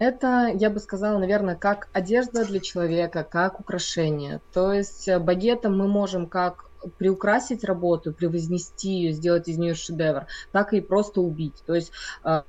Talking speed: 150 wpm